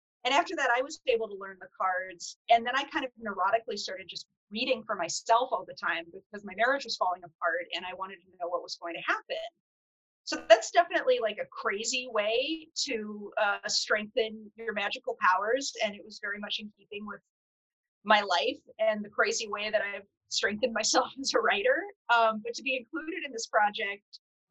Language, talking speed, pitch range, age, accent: English, 200 wpm, 200-255 Hz, 30-49, American